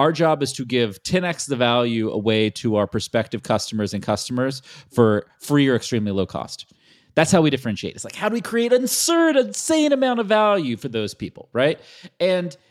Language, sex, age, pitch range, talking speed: English, male, 30-49, 110-170 Hz, 200 wpm